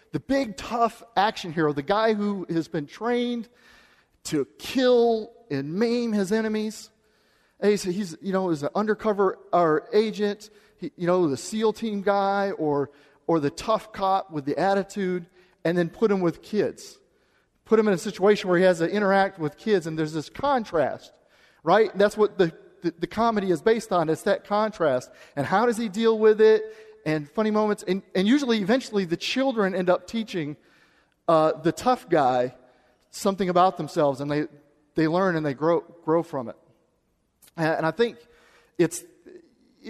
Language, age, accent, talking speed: English, 40-59, American, 175 wpm